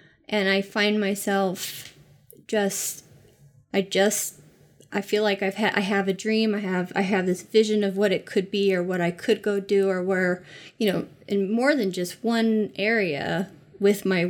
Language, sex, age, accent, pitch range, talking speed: English, female, 20-39, American, 185-215 Hz, 190 wpm